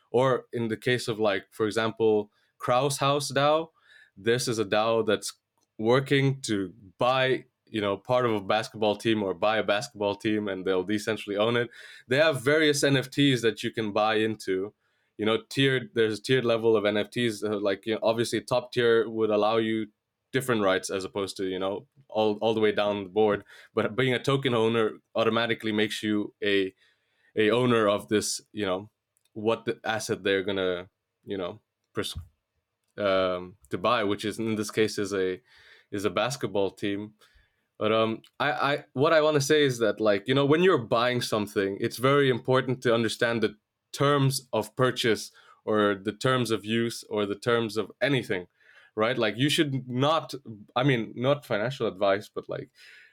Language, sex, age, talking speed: English, male, 20-39, 185 wpm